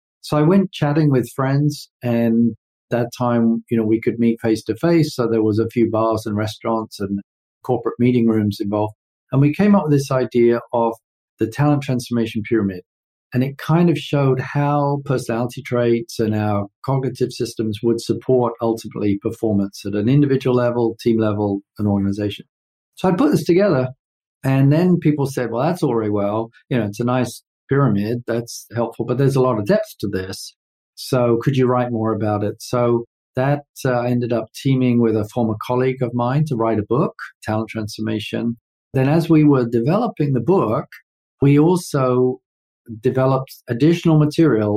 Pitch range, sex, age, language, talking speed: 110-135 Hz, male, 50-69, English, 175 wpm